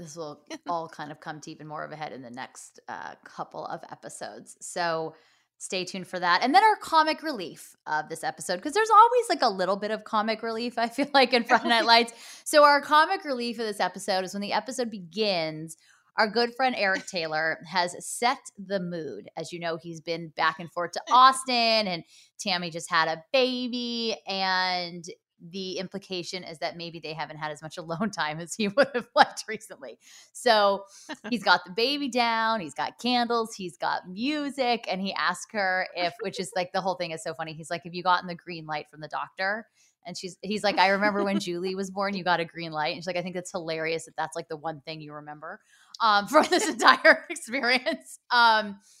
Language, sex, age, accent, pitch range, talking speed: English, female, 20-39, American, 170-235 Hz, 220 wpm